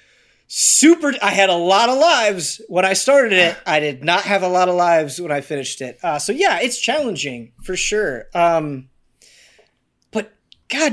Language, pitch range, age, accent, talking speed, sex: English, 145-210 Hz, 30-49, American, 180 wpm, male